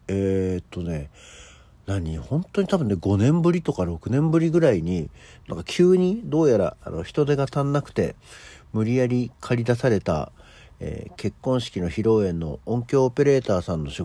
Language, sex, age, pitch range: Japanese, male, 50-69, 85-130 Hz